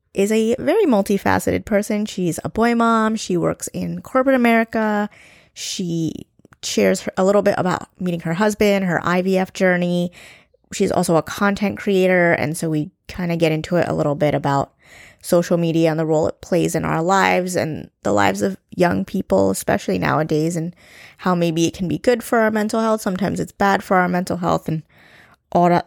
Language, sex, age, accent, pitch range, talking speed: English, female, 20-39, American, 160-200 Hz, 185 wpm